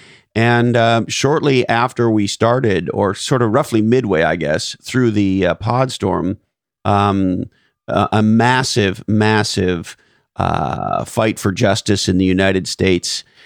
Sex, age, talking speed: male, 50-69, 135 wpm